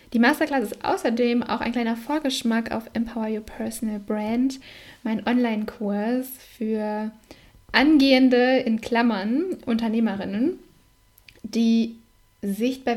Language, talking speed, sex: German, 100 wpm, female